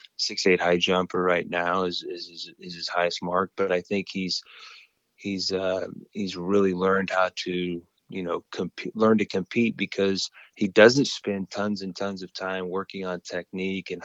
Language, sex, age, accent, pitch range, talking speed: English, male, 30-49, American, 85-95 Hz, 180 wpm